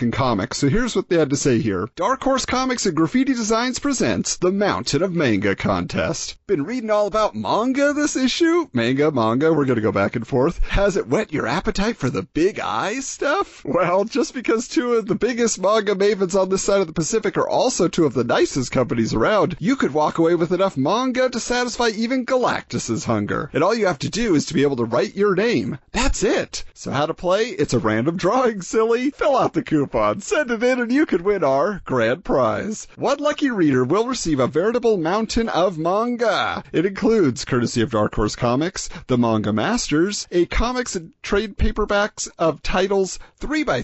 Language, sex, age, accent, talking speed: English, male, 40-59, American, 205 wpm